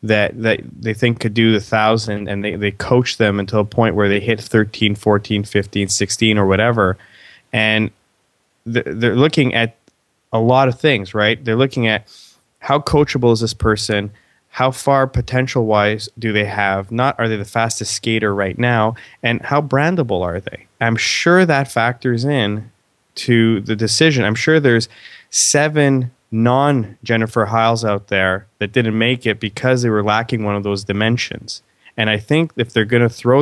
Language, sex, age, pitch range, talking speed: English, male, 20-39, 105-130 Hz, 180 wpm